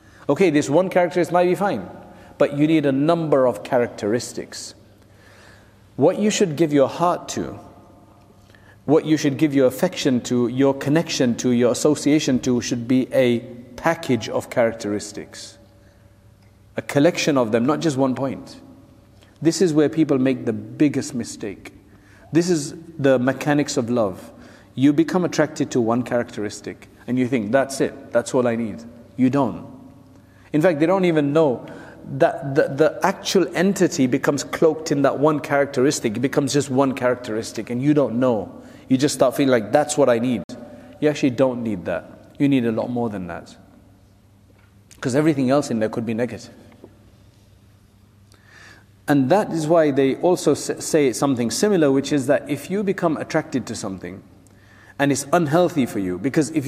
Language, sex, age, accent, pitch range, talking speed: English, male, 40-59, South African, 110-155 Hz, 170 wpm